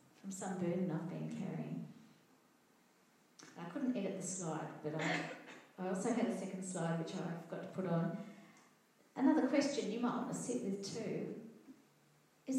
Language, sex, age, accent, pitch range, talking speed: English, female, 40-59, Australian, 185-240 Hz, 165 wpm